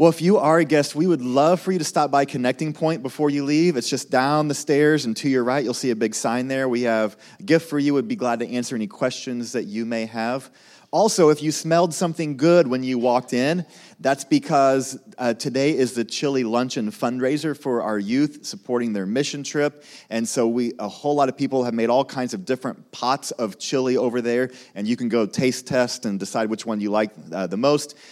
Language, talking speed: English, 235 wpm